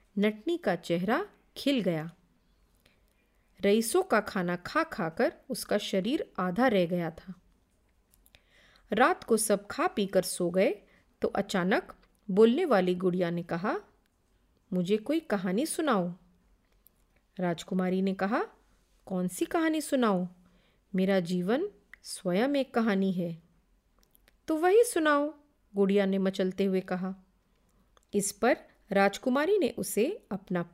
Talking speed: 120 wpm